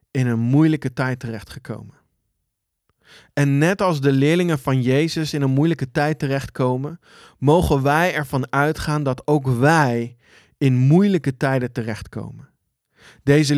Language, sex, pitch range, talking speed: Dutch, male, 130-155 Hz, 130 wpm